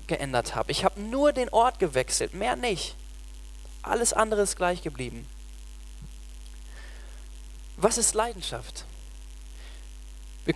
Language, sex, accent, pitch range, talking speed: German, male, German, 135-215 Hz, 110 wpm